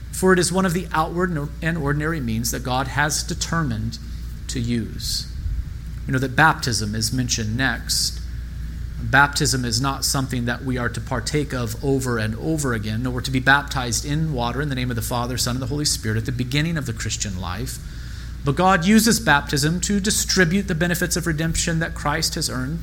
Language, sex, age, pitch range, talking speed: English, male, 40-59, 125-160 Hz, 200 wpm